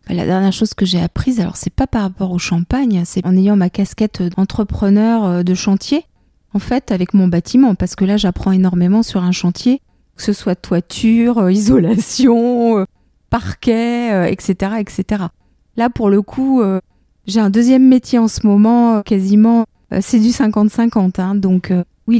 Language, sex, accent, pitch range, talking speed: French, female, French, 185-220 Hz, 160 wpm